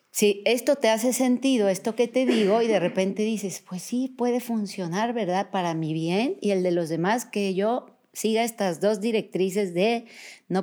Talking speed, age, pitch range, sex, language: 190 wpm, 40-59, 170-215 Hz, female, Spanish